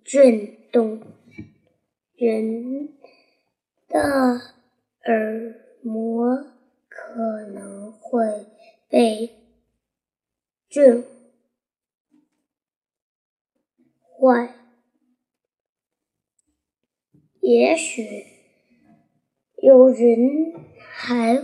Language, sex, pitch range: Chinese, male, 225-260 Hz